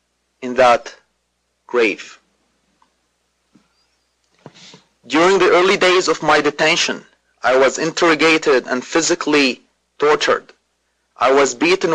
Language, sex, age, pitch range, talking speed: English, male, 30-49, 115-175 Hz, 95 wpm